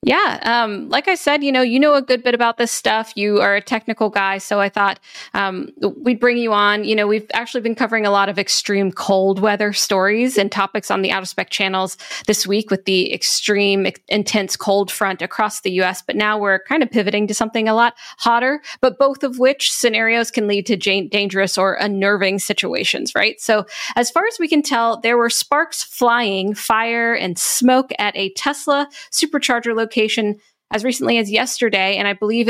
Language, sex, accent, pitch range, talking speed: English, female, American, 200-245 Hz, 205 wpm